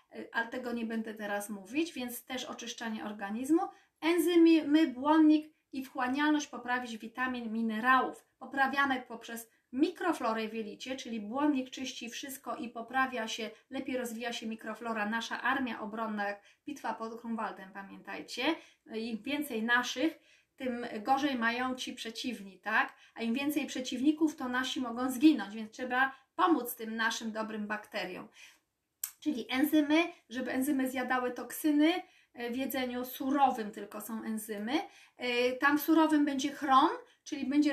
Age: 30-49